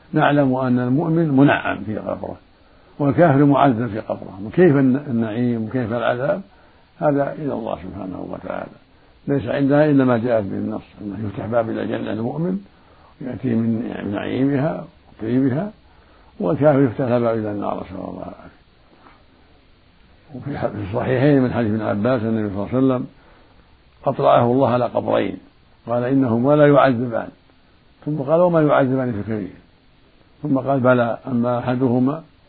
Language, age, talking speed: Arabic, 60-79, 140 wpm